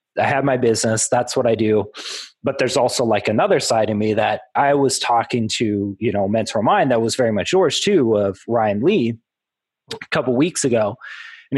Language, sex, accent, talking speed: English, male, American, 220 wpm